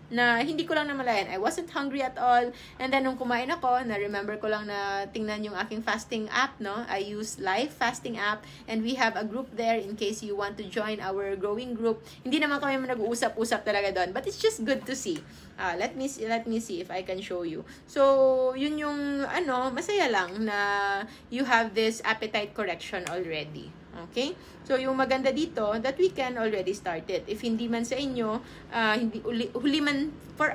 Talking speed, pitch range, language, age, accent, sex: 205 wpm, 205-265 Hz, English, 20-39, Filipino, female